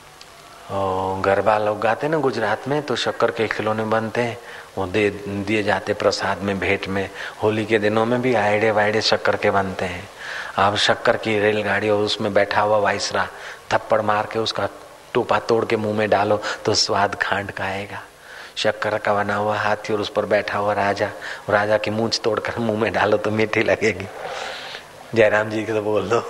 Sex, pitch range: male, 100-110 Hz